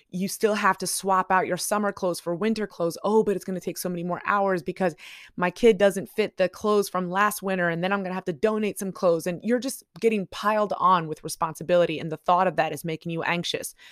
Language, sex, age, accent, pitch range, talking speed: English, female, 20-39, American, 170-205 Hz, 255 wpm